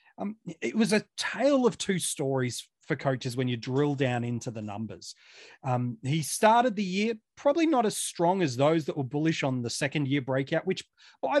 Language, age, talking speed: English, 30-49, 200 wpm